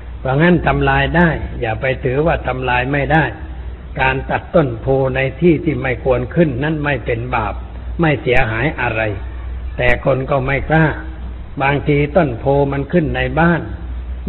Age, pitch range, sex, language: 60-79, 115-145 Hz, male, Thai